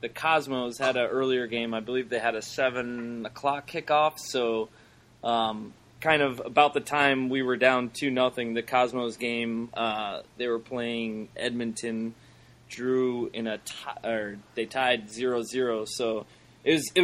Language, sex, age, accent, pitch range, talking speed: English, male, 20-39, American, 115-130 Hz, 165 wpm